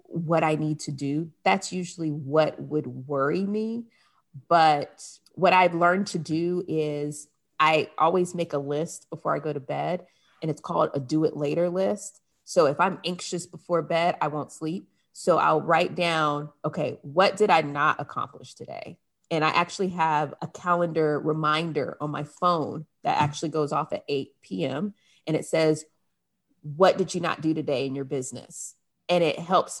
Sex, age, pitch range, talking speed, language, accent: female, 30-49, 150-180 Hz, 175 wpm, English, American